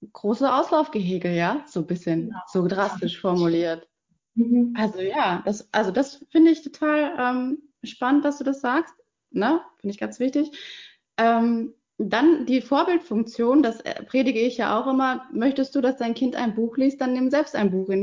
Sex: female